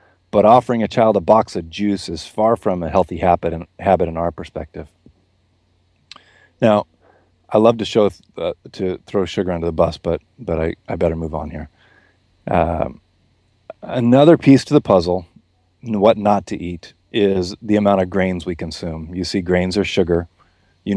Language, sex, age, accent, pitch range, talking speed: English, male, 30-49, American, 85-105 Hz, 175 wpm